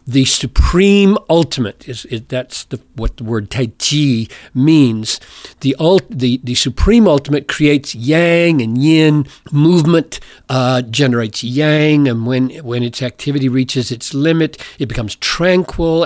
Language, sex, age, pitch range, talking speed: English, male, 50-69, 120-150 Hz, 140 wpm